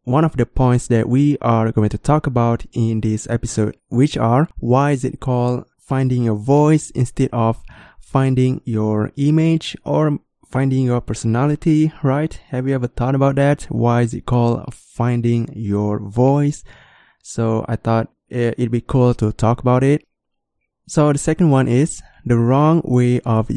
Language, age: English, 20-39